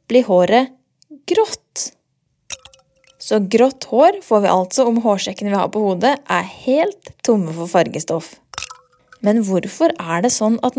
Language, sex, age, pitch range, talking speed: English, female, 20-39, 190-260 Hz, 155 wpm